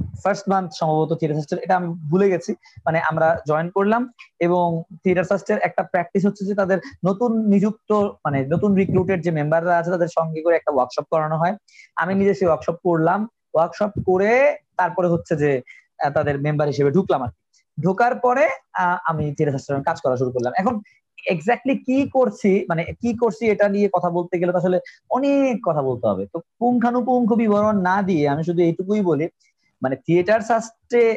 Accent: native